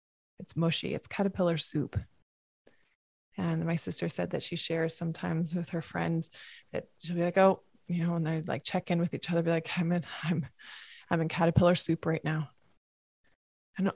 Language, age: English, 20-39